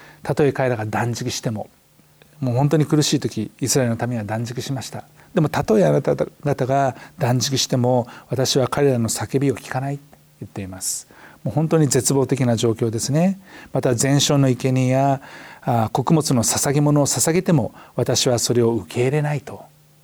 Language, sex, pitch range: Japanese, male, 120-145 Hz